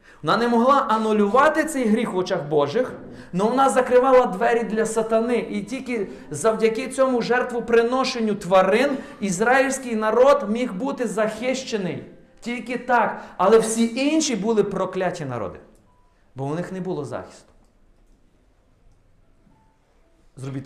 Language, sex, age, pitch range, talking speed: Ukrainian, male, 40-59, 180-250 Hz, 120 wpm